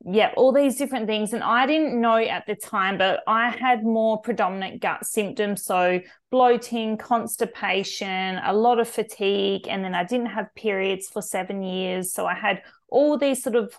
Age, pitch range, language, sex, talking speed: 20-39, 195-240 Hz, English, female, 185 wpm